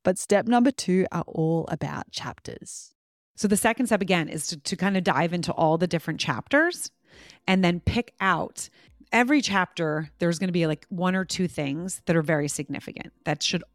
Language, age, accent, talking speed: English, 30-49, American, 195 wpm